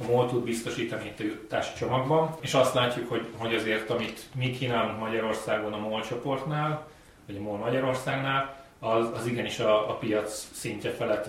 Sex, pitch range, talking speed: male, 110-125 Hz, 170 wpm